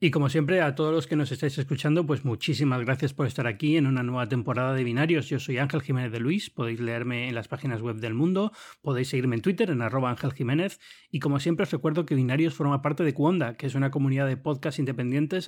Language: Spanish